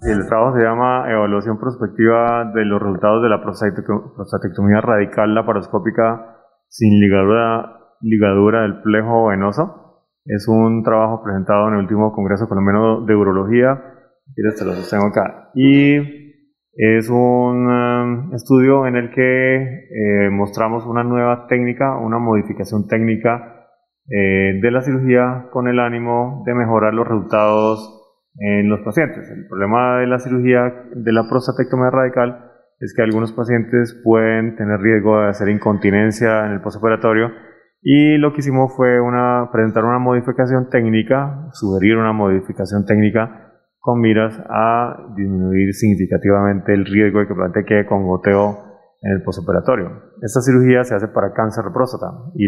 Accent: Colombian